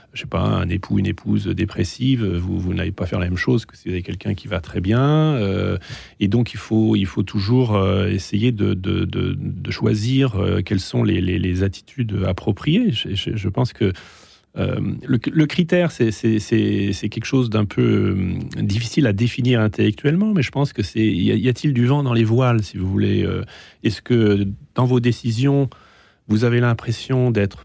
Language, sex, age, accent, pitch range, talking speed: French, male, 30-49, French, 100-120 Hz, 215 wpm